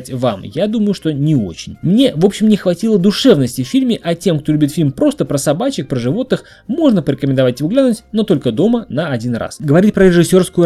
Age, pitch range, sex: 20-39, 130-185 Hz, male